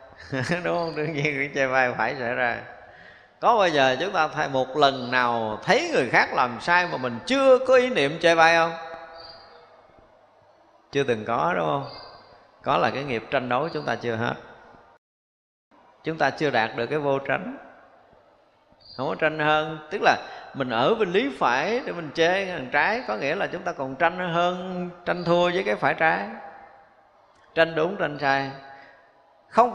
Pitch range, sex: 135-180 Hz, male